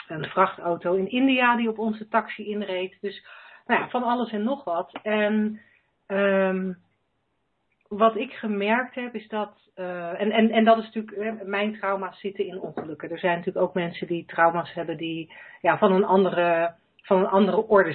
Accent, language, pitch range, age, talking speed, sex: Dutch, Dutch, 175-210 Hz, 40-59, 165 wpm, female